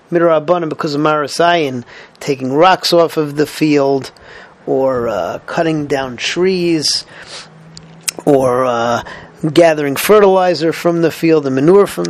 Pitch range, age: 145-175 Hz, 40-59